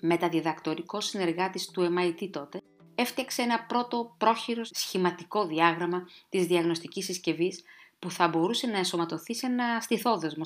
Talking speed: 125 wpm